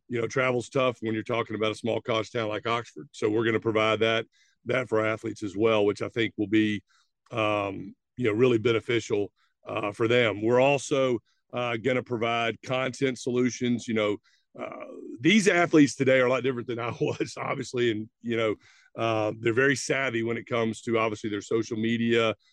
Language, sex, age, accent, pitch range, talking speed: English, male, 50-69, American, 110-125 Hz, 200 wpm